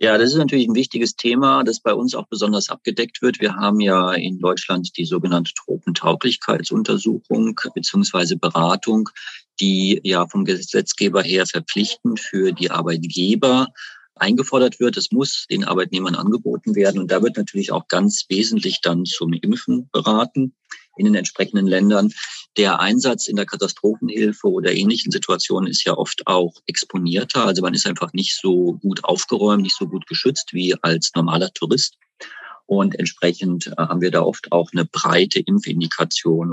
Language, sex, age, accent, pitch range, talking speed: German, male, 40-59, German, 85-115 Hz, 155 wpm